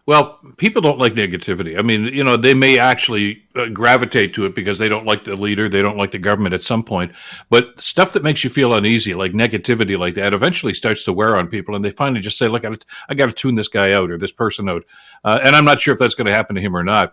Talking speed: 275 wpm